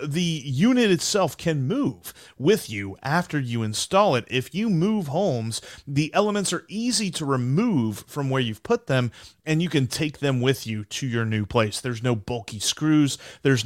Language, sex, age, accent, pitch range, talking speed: English, male, 30-49, American, 120-170 Hz, 185 wpm